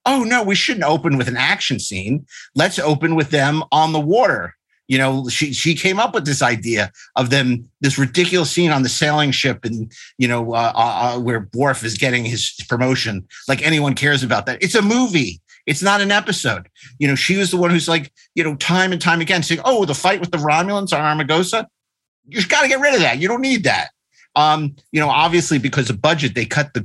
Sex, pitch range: male, 120-165 Hz